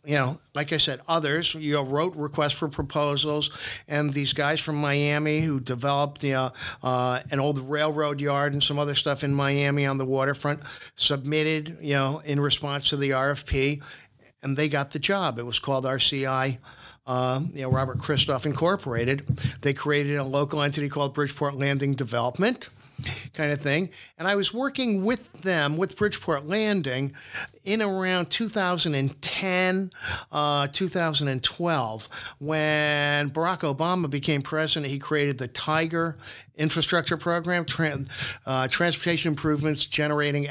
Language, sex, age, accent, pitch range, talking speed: English, male, 50-69, American, 135-160 Hz, 150 wpm